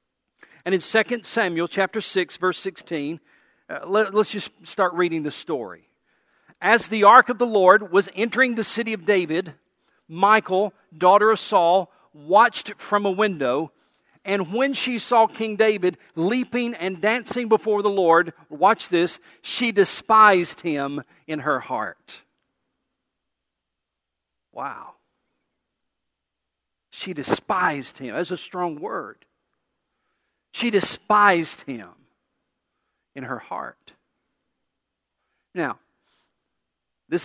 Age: 50-69